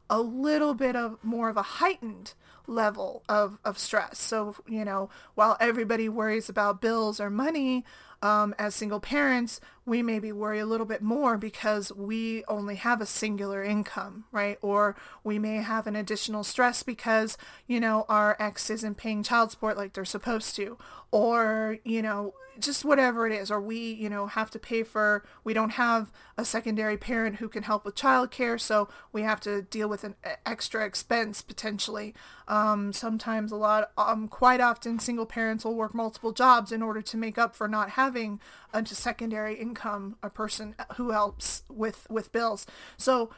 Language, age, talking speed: English, 30-49, 180 wpm